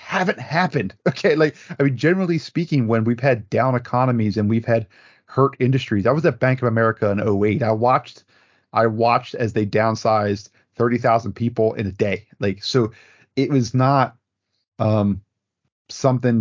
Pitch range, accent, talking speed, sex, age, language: 105-130 Hz, American, 165 wpm, male, 30-49, English